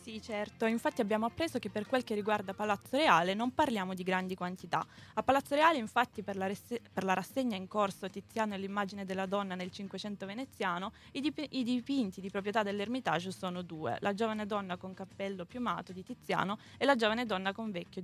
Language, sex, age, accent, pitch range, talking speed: Italian, female, 20-39, native, 190-230 Hz, 190 wpm